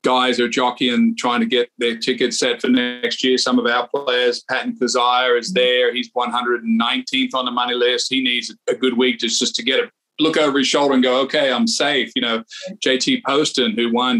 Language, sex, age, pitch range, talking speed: English, male, 40-59, 120-200 Hz, 210 wpm